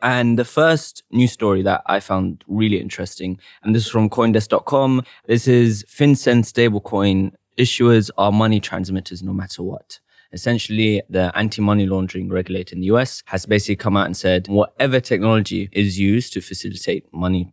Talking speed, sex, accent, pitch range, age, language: 160 wpm, male, British, 95-115 Hz, 20-39, English